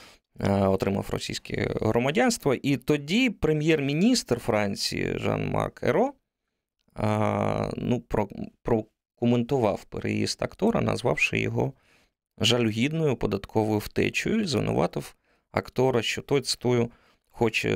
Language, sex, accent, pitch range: Ukrainian, male, native, 105-125 Hz